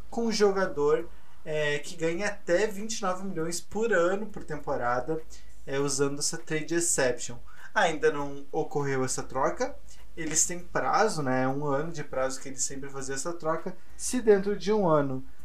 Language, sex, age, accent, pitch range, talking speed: Portuguese, male, 20-39, Brazilian, 140-190 Hz, 165 wpm